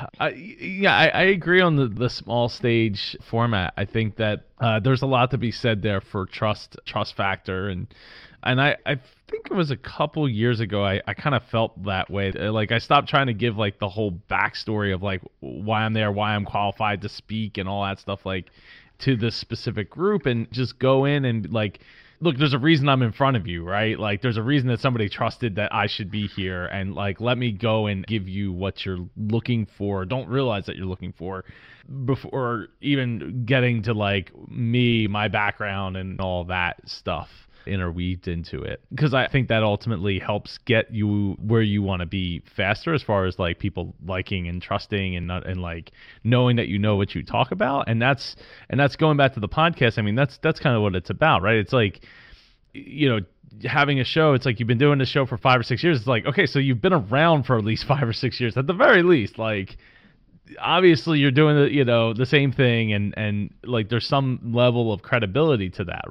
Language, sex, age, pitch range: English, male, 20-39, 100-130 Hz